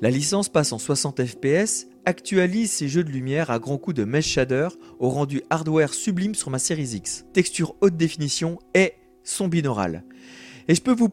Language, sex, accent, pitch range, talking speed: French, male, French, 130-190 Hz, 190 wpm